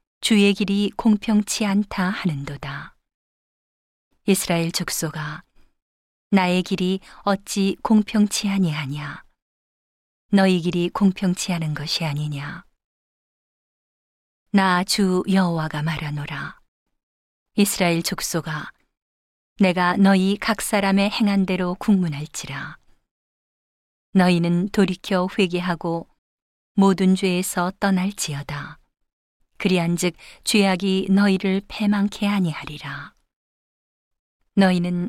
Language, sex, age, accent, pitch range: Korean, female, 40-59, native, 165-200 Hz